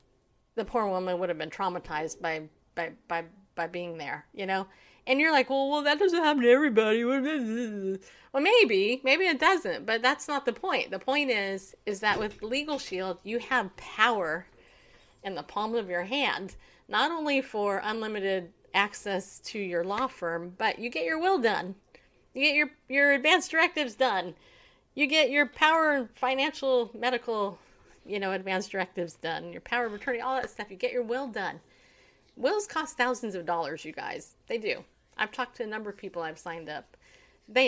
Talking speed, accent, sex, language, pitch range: 185 wpm, American, female, English, 190-275 Hz